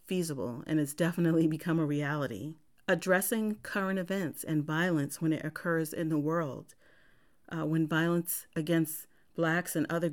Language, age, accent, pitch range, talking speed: English, 40-59, American, 155-185 Hz, 140 wpm